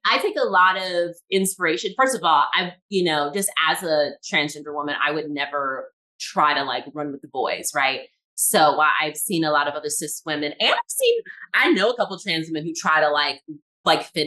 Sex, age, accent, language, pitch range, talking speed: female, 20-39, American, English, 155-200 Hz, 225 wpm